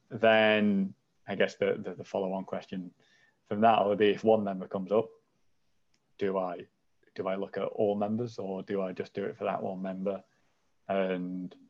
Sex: male